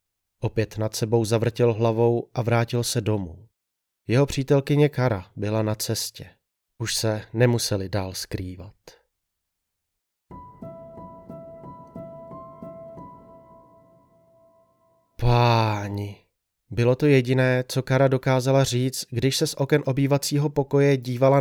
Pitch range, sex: 105-130 Hz, male